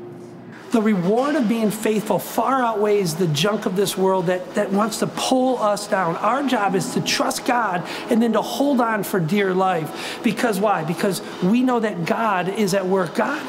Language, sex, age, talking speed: English, male, 40-59, 195 wpm